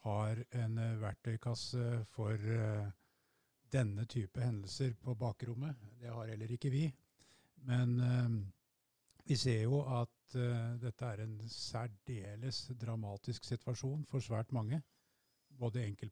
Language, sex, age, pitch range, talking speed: English, male, 50-69, 110-125 Hz, 125 wpm